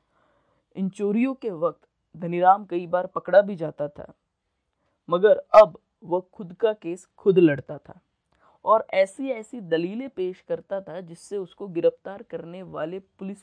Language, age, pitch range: Hindi, 20-39, 170-225 Hz